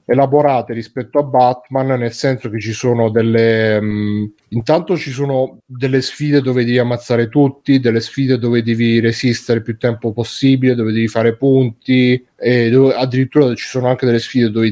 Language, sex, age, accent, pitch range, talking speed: Italian, male, 30-49, native, 115-135 Hz, 170 wpm